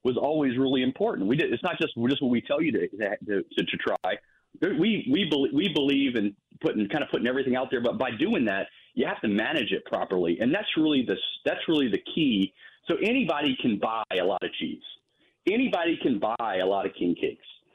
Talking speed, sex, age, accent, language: 225 wpm, male, 40-59, American, English